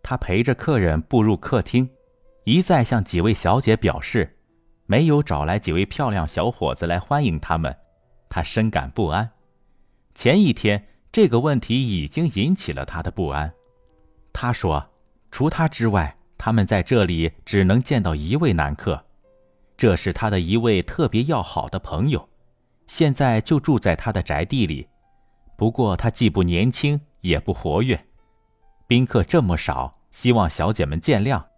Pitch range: 85-125 Hz